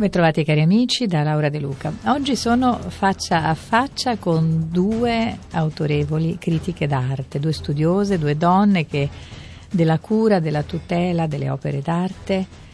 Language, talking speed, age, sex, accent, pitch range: Italian, 140 wpm, 50-69, female, native, 145-175 Hz